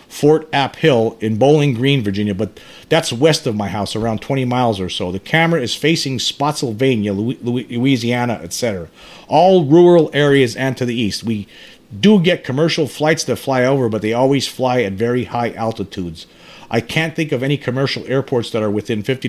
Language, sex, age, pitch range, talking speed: English, male, 40-59, 115-145 Hz, 185 wpm